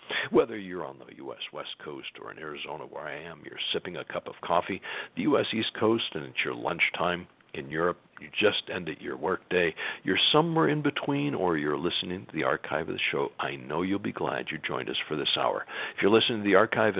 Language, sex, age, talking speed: English, male, 60-79, 225 wpm